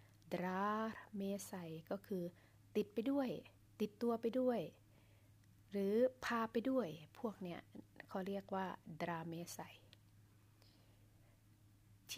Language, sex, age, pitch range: Thai, female, 20-39, 125-210 Hz